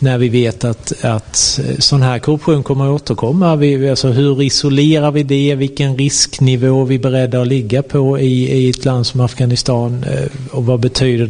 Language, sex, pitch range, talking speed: Swedish, male, 120-140 Hz, 180 wpm